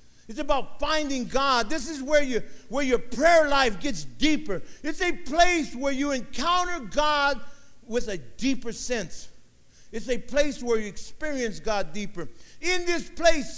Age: 50-69